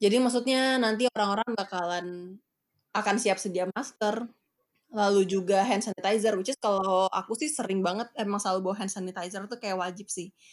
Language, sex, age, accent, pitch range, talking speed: Indonesian, female, 20-39, native, 190-230 Hz, 165 wpm